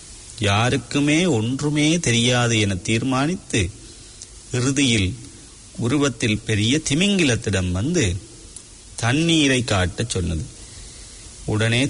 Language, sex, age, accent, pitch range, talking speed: English, male, 40-59, Indian, 100-125 Hz, 70 wpm